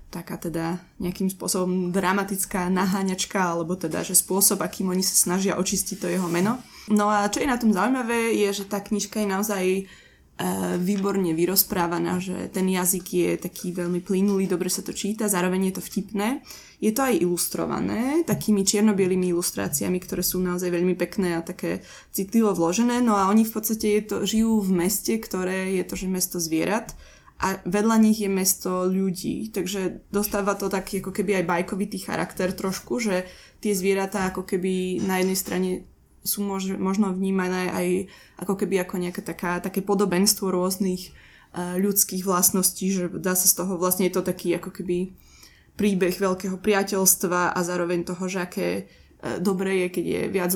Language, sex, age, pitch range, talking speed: Slovak, female, 20-39, 180-200 Hz, 175 wpm